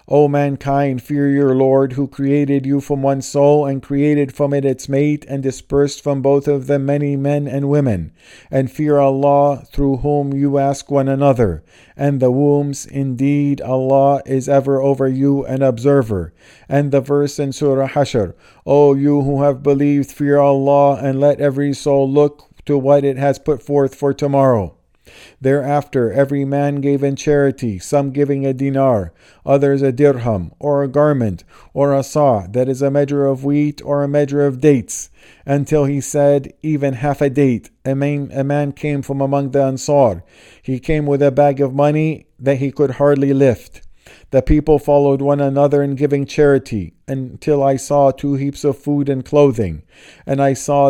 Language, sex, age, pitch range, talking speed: English, male, 50-69, 135-145 Hz, 175 wpm